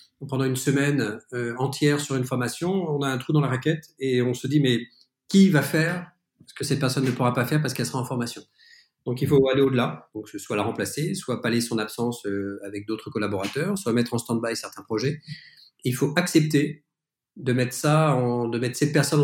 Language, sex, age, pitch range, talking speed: French, male, 40-59, 120-150 Hz, 225 wpm